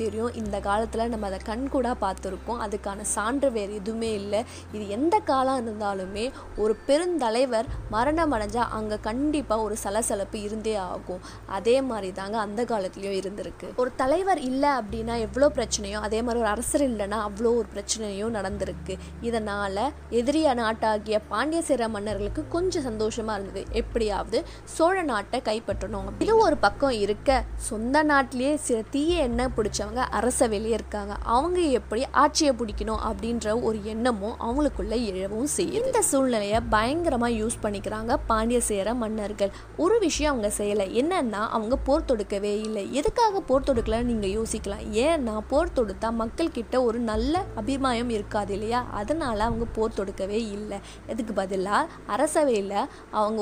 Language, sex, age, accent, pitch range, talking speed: Tamil, female, 20-39, native, 210-270 Hz, 90 wpm